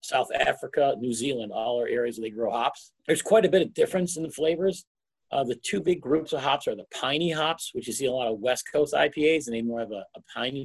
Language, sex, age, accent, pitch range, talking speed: English, male, 50-69, American, 115-165 Hz, 270 wpm